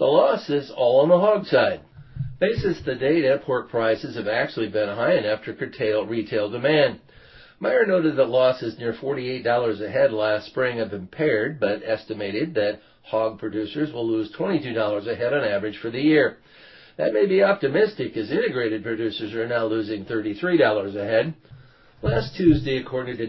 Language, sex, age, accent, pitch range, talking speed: English, male, 50-69, American, 110-145 Hz, 170 wpm